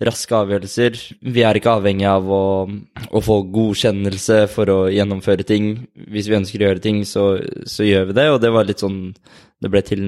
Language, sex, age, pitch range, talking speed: English, male, 20-39, 100-115 Hz, 190 wpm